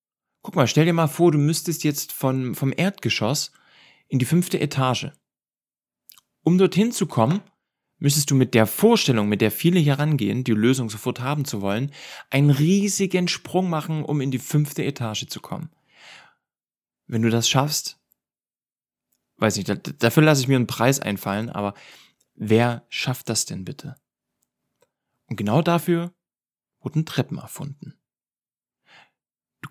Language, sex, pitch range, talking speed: German, male, 115-160 Hz, 145 wpm